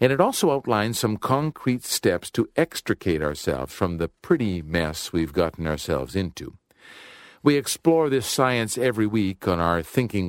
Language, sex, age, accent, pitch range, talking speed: English, male, 50-69, American, 90-125 Hz, 155 wpm